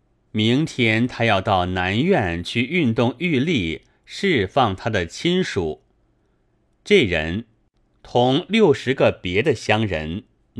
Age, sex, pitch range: 30-49, male, 95-140 Hz